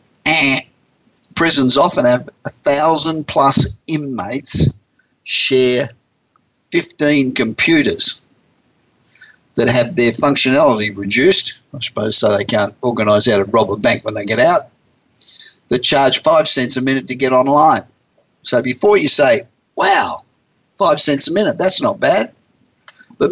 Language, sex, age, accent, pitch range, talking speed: English, male, 50-69, Australian, 125-150 Hz, 135 wpm